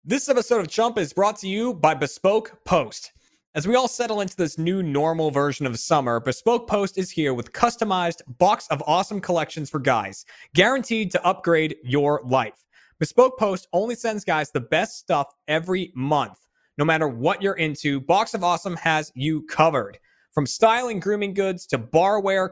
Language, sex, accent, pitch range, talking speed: English, male, American, 150-200 Hz, 175 wpm